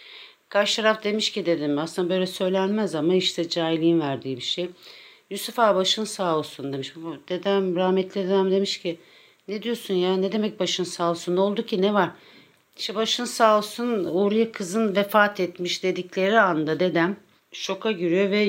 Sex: female